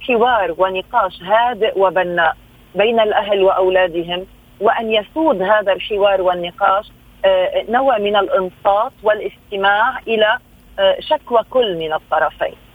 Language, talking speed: Arabic, 100 wpm